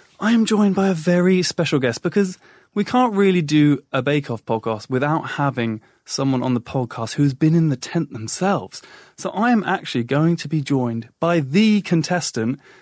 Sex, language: male, English